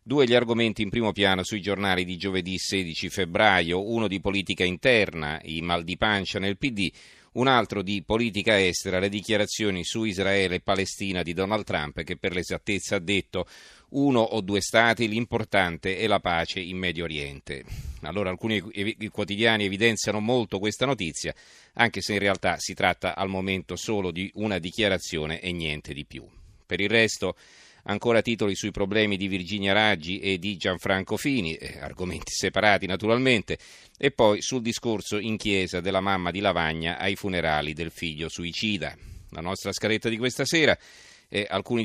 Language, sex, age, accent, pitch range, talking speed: Italian, male, 40-59, native, 90-105 Hz, 165 wpm